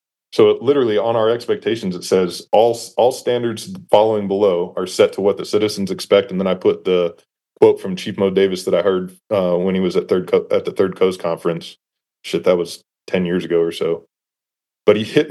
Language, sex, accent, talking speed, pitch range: English, male, American, 215 wpm, 95-150 Hz